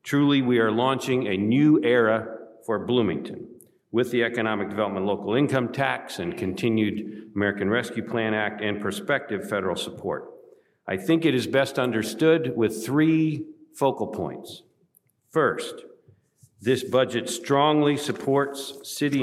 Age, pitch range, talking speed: 50-69, 110-140 Hz, 130 wpm